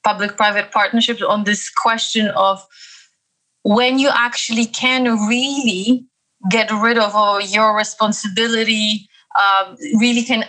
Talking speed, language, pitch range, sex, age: 110 wpm, English, 195-235 Hz, female, 20-39